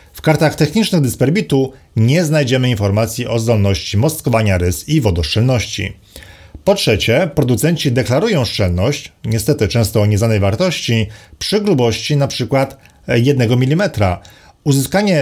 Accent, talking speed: native, 115 wpm